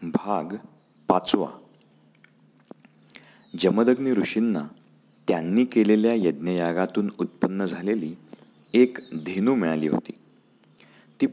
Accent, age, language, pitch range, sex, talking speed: native, 40-59, Marathi, 85-115 Hz, male, 75 wpm